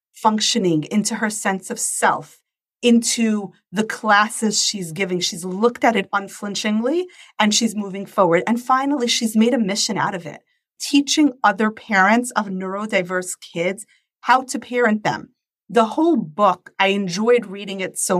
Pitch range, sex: 190-225 Hz, female